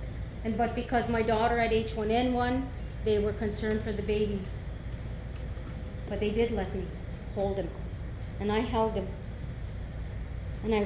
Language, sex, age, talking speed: English, female, 30-49, 145 wpm